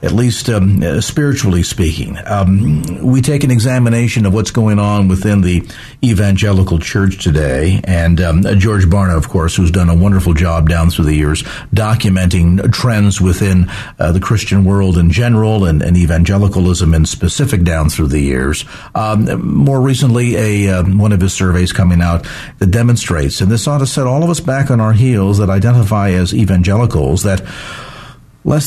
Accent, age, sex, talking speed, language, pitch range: American, 50-69, male, 175 wpm, English, 95-125 Hz